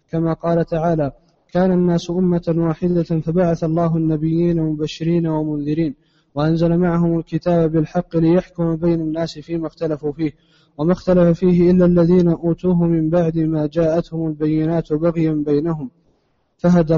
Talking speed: 125 wpm